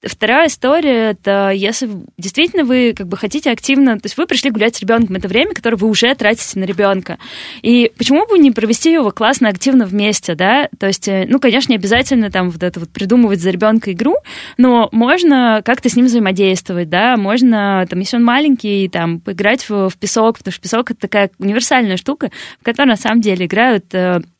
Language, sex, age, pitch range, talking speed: Russian, female, 20-39, 190-240 Hz, 200 wpm